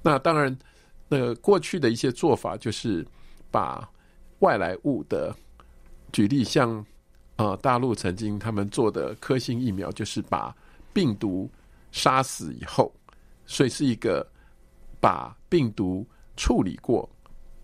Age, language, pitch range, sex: 50-69, Chinese, 95-130 Hz, male